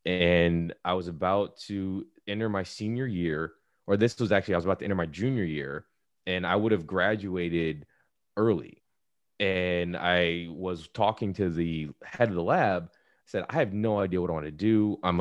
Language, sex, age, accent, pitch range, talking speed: English, male, 20-39, American, 85-110 Hz, 190 wpm